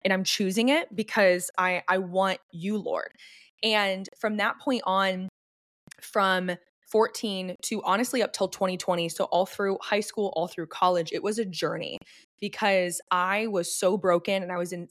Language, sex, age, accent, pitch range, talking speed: English, female, 20-39, American, 185-220 Hz, 175 wpm